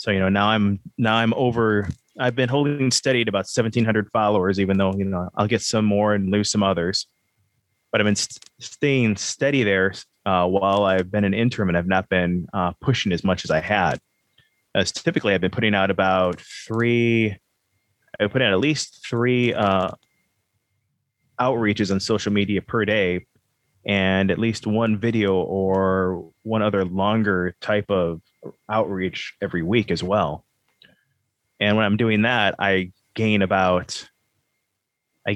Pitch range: 95-115 Hz